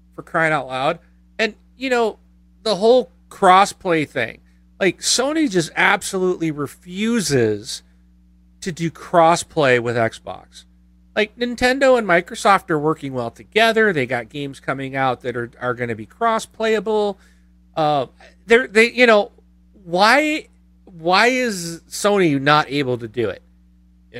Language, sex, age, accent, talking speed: English, male, 40-59, American, 145 wpm